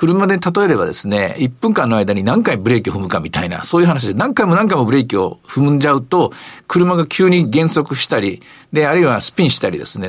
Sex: male